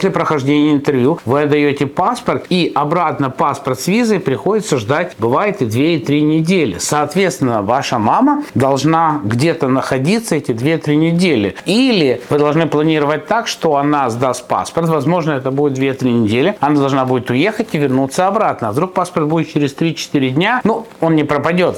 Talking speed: 165 wpm